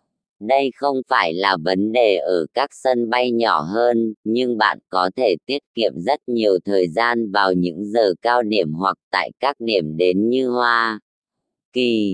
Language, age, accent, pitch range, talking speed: English, 20-39, American, 100-125 Hz, 175 wpm